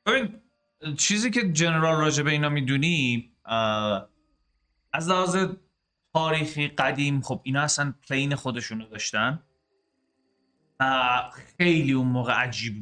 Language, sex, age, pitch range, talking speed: Persian, male, 30-49, 120-155 Hz, 100 wpm